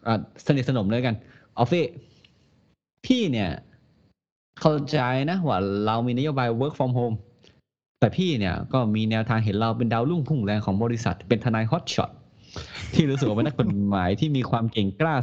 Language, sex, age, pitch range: Thai, male, 20-39, 110-150 Hz